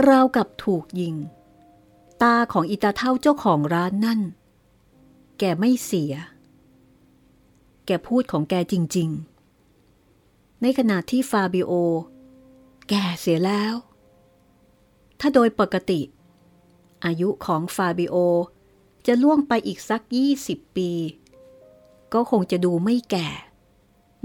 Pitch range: 145-220 Hz